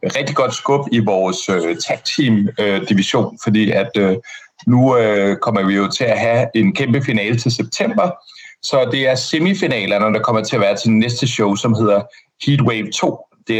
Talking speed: 185 wpm